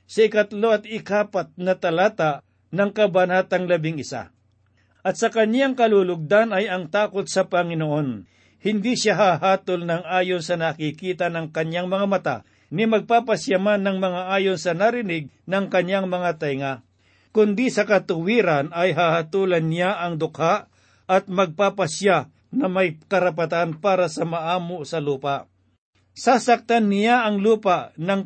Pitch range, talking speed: 160-200 Hz, 135 wpm